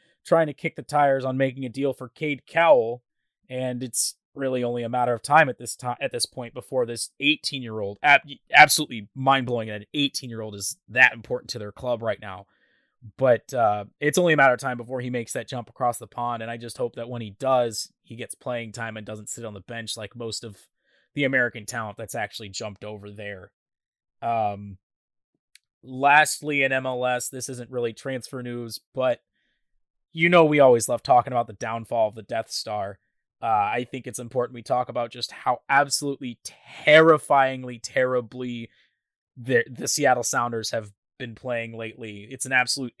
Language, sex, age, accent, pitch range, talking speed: English, male, 20-39, American, 115-135 Hz, 195 wpm